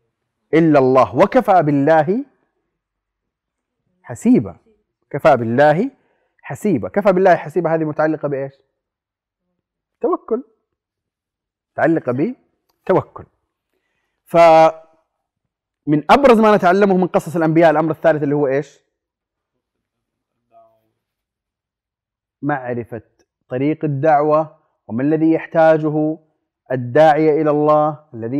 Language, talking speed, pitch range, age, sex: Arabic, 85 wpm, 135-175 Hz, 30-49, male